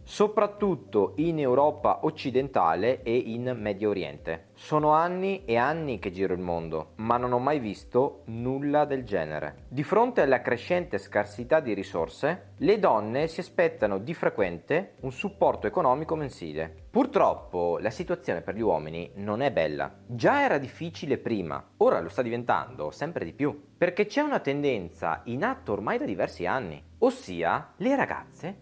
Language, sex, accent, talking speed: Italian, male, native, 155 wpm